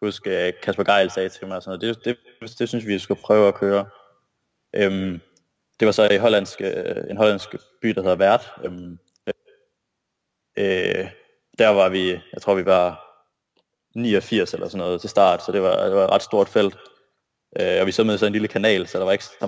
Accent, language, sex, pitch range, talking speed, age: native, Danish, male, 95-130 Hz, 215 wpm, 20-39